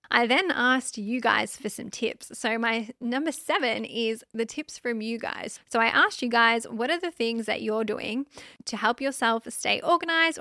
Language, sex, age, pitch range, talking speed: English, female, 10-29, 220-270 Hz, 200 wpm